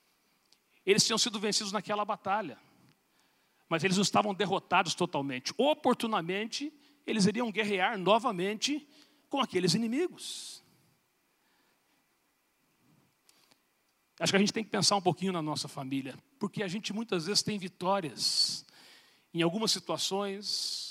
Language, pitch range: Portuguese, 180-230 Hz